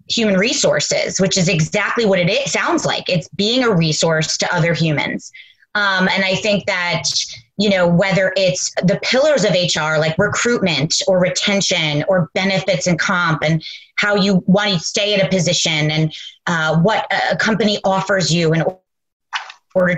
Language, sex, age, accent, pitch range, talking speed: English, female, 30-49, American, 175-210 Hz, 165 wpm